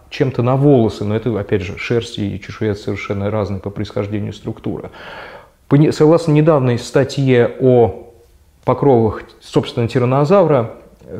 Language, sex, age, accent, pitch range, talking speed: Russian, male, 20-39, native, 105-140 Hz, 120 wpm